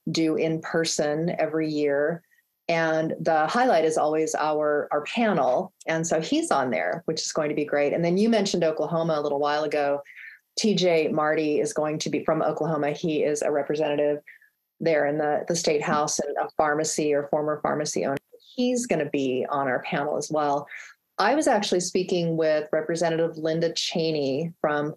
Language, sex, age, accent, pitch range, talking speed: English, female, 30-49, American, 150-175 Hz, 185 wpm